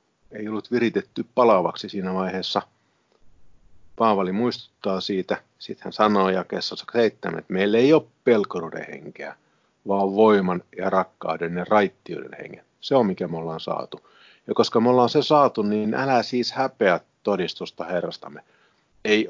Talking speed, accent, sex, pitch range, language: 135 wpm, native, male, 90-115 Hz, Finnish